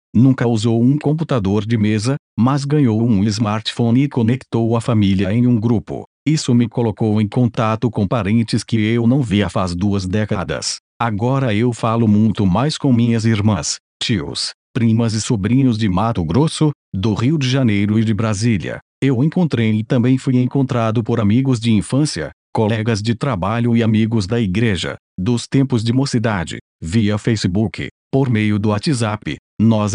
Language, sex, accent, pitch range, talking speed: Portuguese, male, Brazilian, 110-130 Hz, 160 wpm